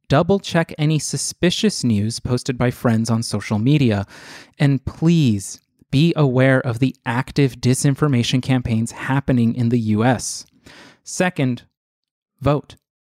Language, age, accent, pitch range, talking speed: English, 30-49, American, 120-160 Hz, 115 wpm